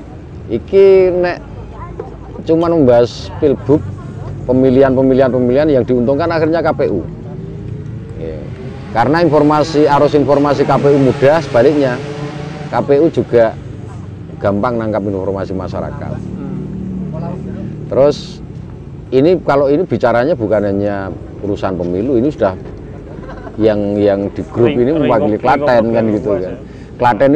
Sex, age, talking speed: male, 30-49, 100 wpm